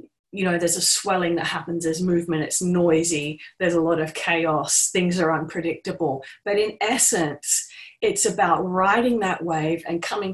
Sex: female